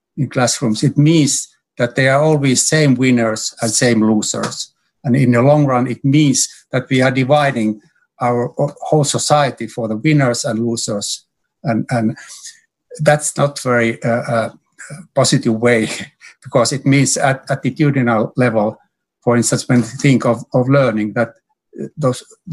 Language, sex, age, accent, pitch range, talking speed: English, male, 60-79, Finnish, 120-145 Hz, 155 wpm